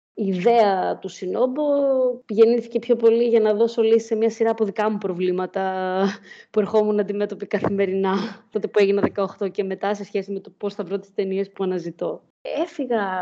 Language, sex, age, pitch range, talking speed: Greek, female, 20-39, 195-235 Hz, 180 wpm